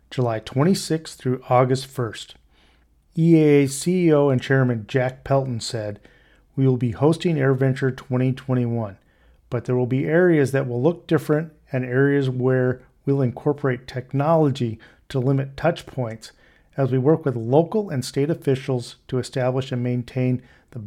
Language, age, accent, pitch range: English, 40-59, American, 125-150 Hz